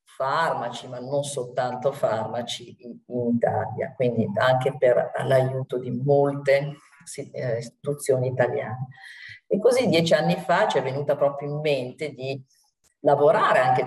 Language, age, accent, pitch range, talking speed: Italian, 40-59, native, 125-150 Hz, 135 wpm